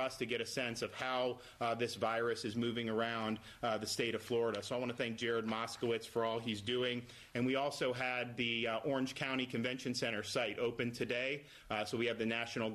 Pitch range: 115-125 Hz